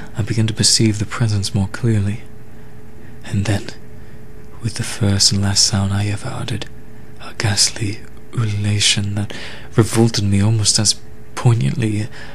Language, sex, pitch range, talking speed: English, male, 105-115 Hz, 135 wpm